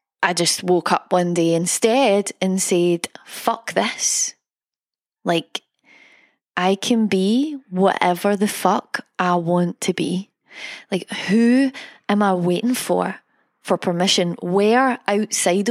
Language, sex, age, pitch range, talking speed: English, female, 20-39, 180-230 Hz, 120 wpm